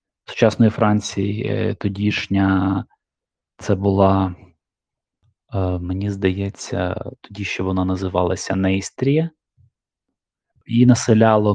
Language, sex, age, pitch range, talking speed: Ukrainian, male, 20-39, 100-120 Hz, 75 wpm